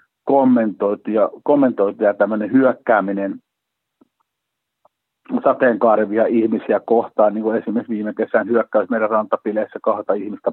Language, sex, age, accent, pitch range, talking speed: Finnish, male, 50-69, native, 105-125 Hz, 105 wpm